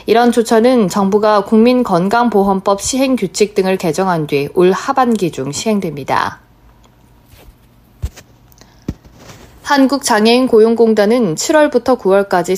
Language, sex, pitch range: Korean, female, 180-235 Hz